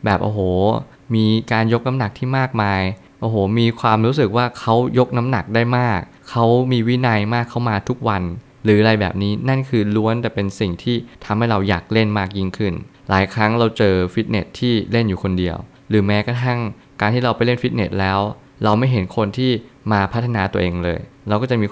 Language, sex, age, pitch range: Thai, male, 20-39, 100-120 Hz